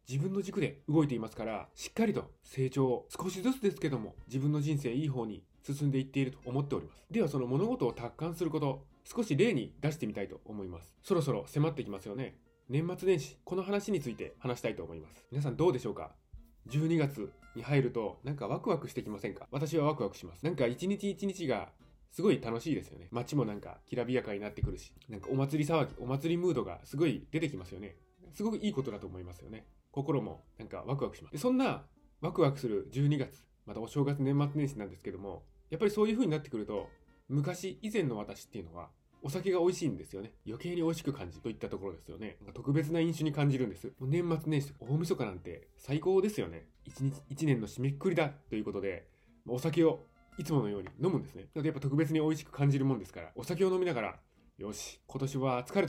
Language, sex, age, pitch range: Japanese, male, 20-39, 115-165 Hz